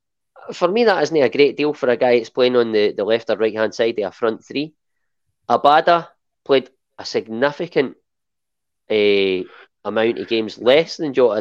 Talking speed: 185 wpm